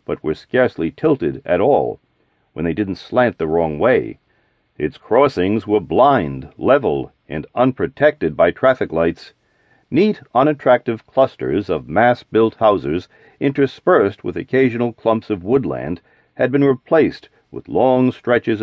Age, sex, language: 50-69, male, English